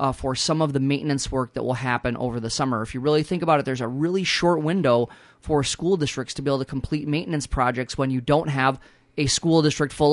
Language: English